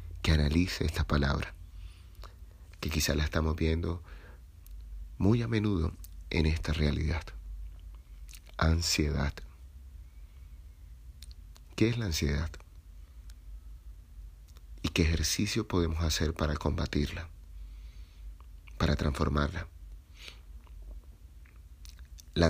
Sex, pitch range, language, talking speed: male, 75-85 Hz, Spanish, 80 wpm